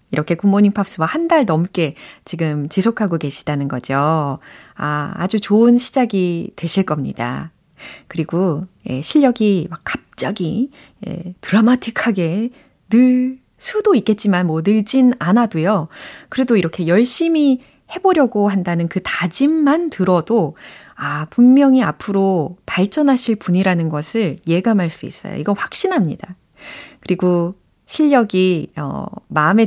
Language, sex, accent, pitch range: Korean, female, native, 170-255 Hz